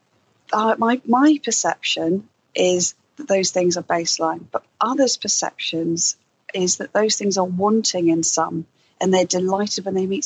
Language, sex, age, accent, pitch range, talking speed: English, female, 40-59, British, 170-215 Hz, 160 wpm